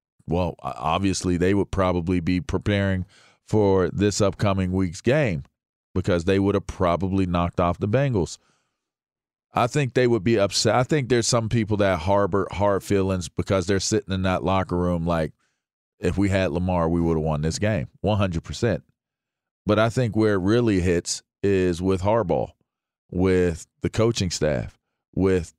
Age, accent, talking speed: 40-59, American, 165 wpm